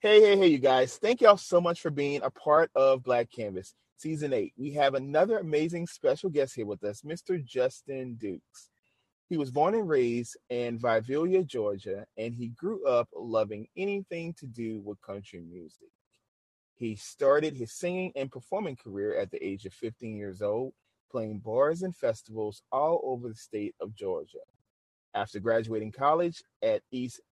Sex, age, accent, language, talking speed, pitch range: male, 30-49, American, English, 170 wpm, 115-170 Hz